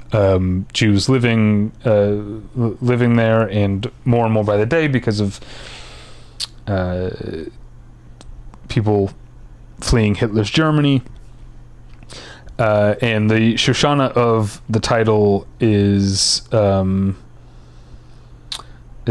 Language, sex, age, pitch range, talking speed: English, male, 30-49, 100-120 Hz, 90 wpm